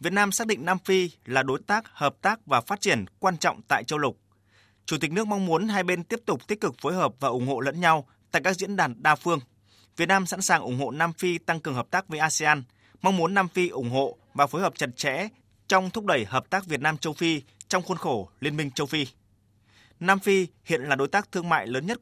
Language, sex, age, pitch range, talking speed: Vietnamese, male, 20-39, 125-180 Hz, 255 wpm